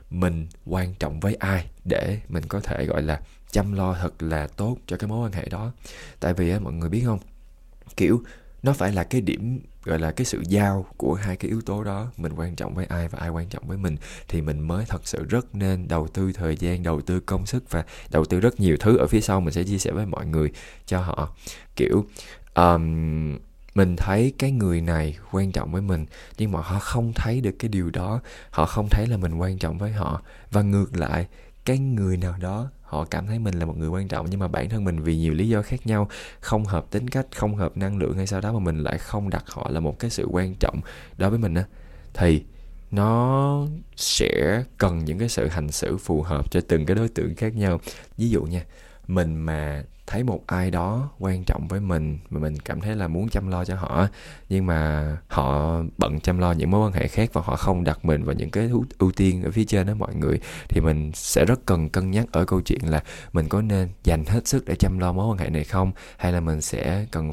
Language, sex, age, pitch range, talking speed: Vietnamese, male, 20-39, 80-105 Hz, 240 wpm